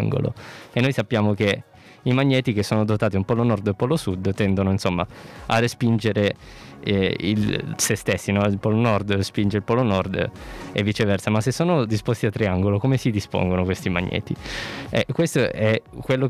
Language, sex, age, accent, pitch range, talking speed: Italian, male, 20-39, native, 100-115 Hz, 180 wpm